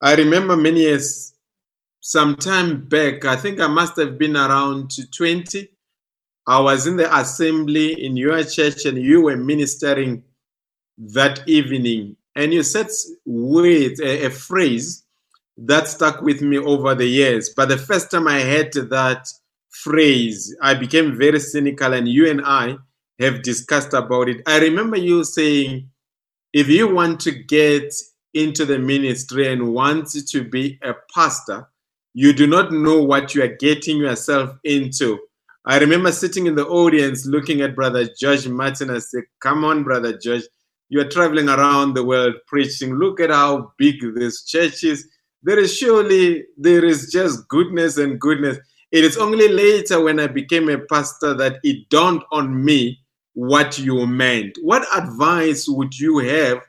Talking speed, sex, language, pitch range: 160 wpm, male, English, 135-160 Hz